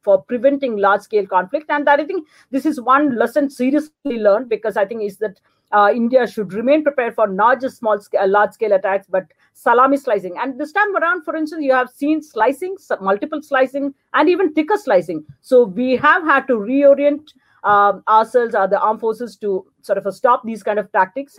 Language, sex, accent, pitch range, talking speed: English, female, Indian, 200-275 Hz, 200 wpm